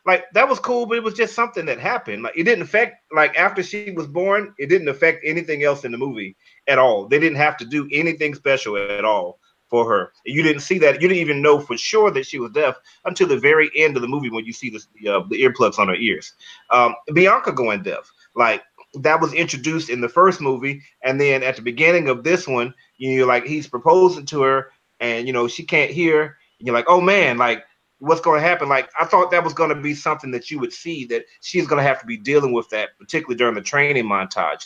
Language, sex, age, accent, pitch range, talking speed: English, male, 30-49, American, 130-180 Hz, 250 wpm